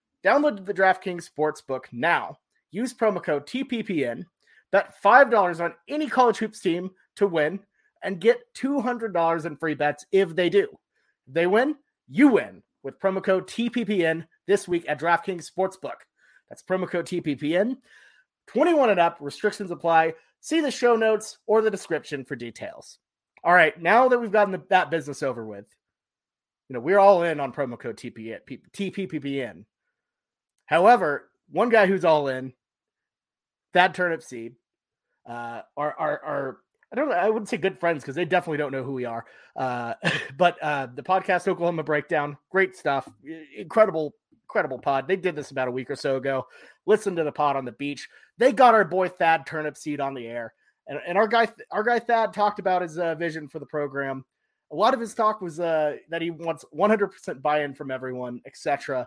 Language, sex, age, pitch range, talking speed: English, male, 30-49, 145-205 Hz, 175 wpm